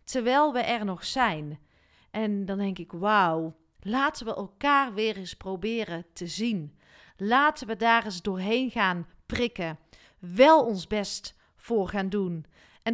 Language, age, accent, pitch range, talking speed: Dutch, 40-59, Dutch, 195-250 Hz, 150 wpm